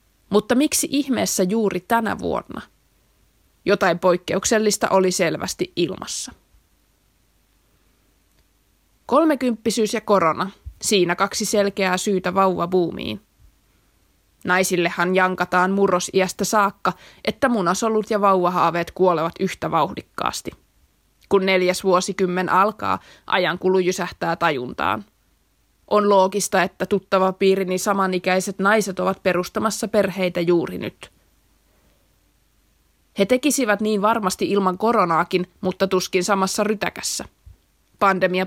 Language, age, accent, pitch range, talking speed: Finnish, 20-39, native, 180-205 Hz, 95 wpm